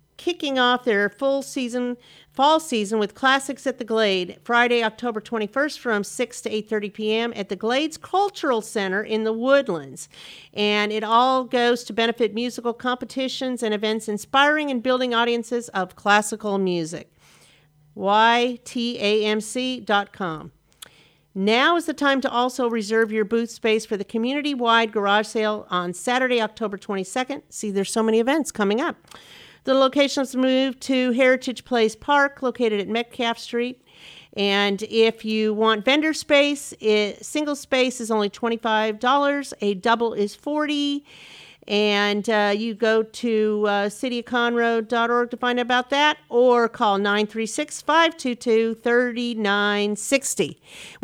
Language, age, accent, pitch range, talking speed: English, 50-69, American, 210-255 Hz, 135 wpm